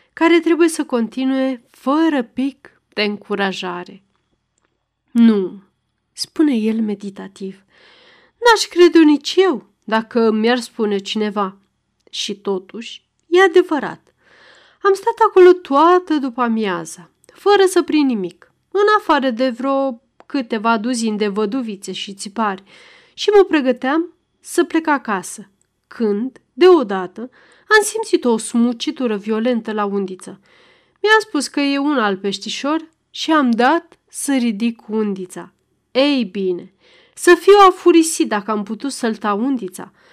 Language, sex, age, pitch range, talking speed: Romanian, female, 30-49, 210-320 Hz, 125 wpm